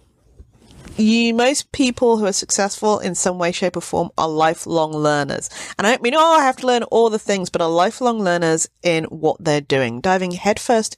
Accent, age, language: British, 40-59, English